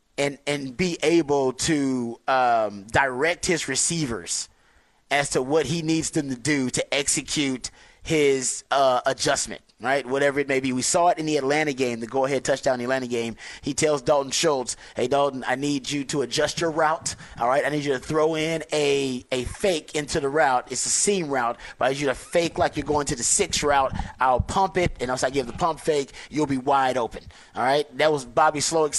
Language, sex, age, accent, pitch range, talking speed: English, male, 30-49, American, 135-160 Hz, 215 wpm